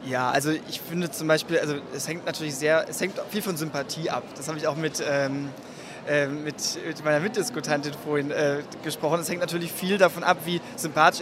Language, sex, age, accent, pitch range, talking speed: German, male, 20-39, German, 150-180 Hz, 210 wpm